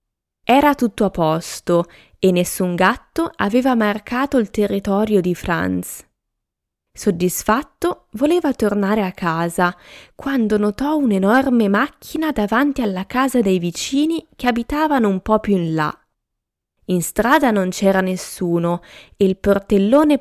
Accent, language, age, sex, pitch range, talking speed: native, Italian, 20-39, female, 180-255 Hz, 125 wpm